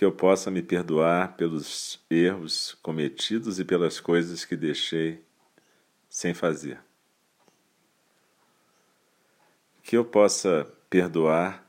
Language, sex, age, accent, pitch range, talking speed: Portuguese, male, 50-69, Brazilian, 80-95 Hz, 100 wpm